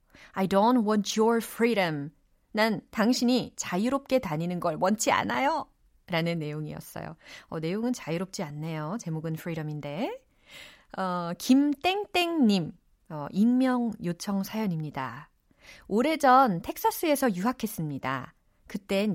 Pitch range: 165-250 Hz